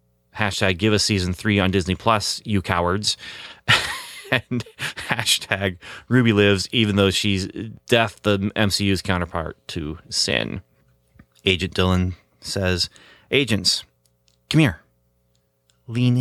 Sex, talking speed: male, 110 wpm